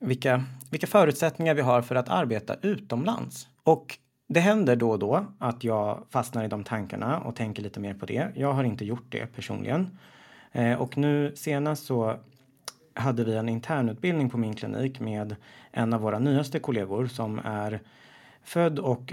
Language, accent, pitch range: Swedish, native, 110-135 Hz